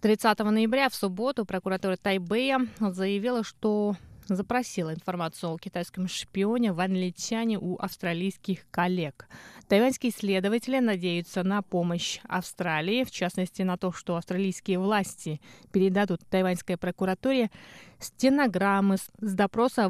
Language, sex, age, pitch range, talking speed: Russian, female, 20-39, 180-230 Hz, 110 wpm